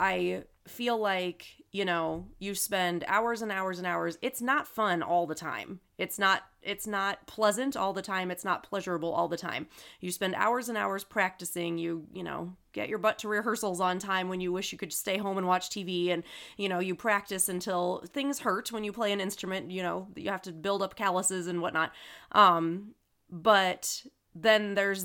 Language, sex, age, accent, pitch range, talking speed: English, female, 30-49, American, 175-205 Hz, 205 wpm